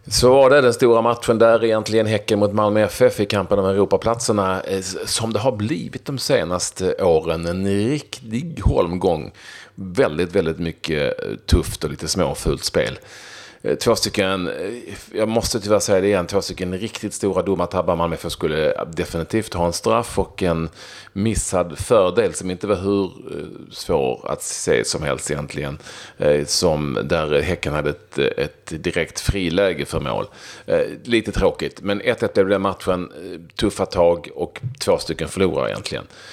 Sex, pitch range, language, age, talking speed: male, 85-115 Hz, Swedish, 40-59, 155 wpm